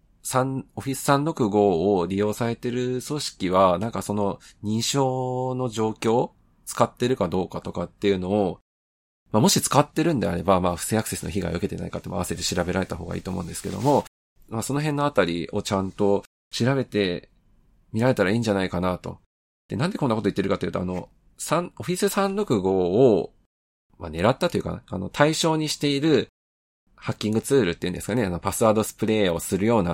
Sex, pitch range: male, 95-130 Hz